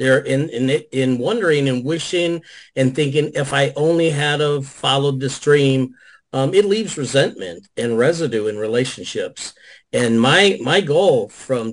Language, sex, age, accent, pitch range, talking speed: English, male, 50-69, American, 120-150 Hz, 155 wpm